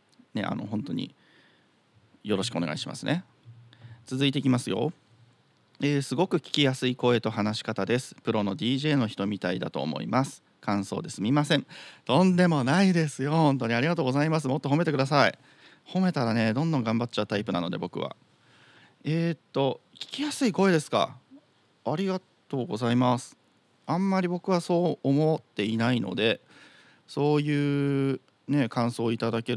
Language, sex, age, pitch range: Japanese, male, 40-59, 115-160 Hz